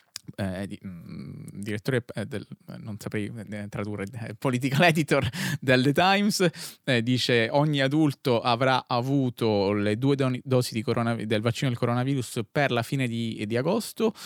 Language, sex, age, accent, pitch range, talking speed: Italian, male, 20-39, native, 105-125 Hz, 160 wpm